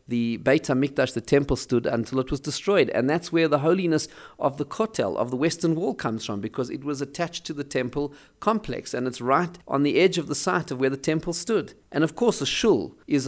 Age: 40-59